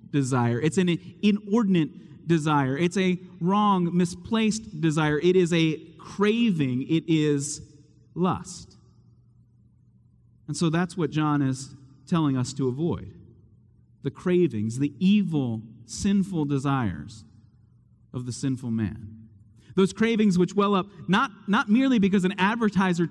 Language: English